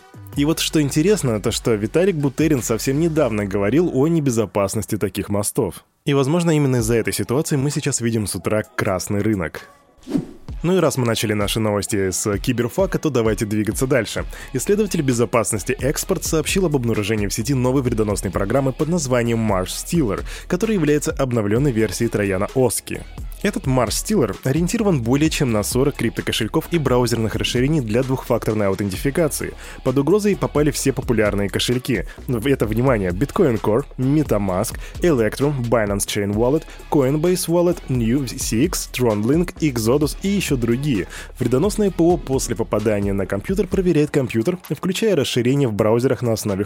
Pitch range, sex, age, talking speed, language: 110-150 Hz, male, 20-39, 150 wpm, Russian